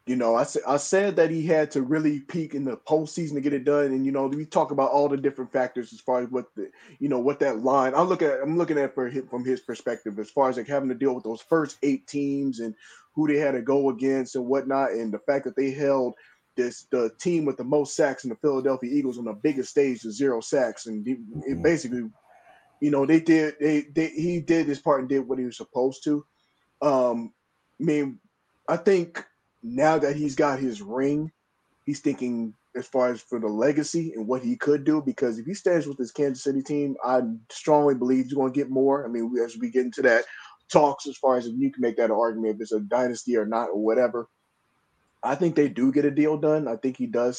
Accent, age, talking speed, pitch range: American, 20-39, 245 wpm, 125-150 Hz